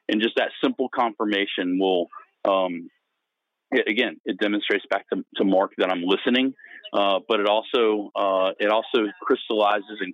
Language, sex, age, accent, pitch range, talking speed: English, male, 40-59, American, 95-135 Hz, 160 wpm